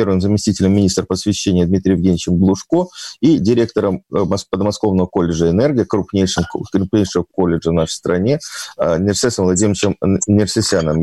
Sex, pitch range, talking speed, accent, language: male, 90-105 Hz, 115 wpm, native, Russian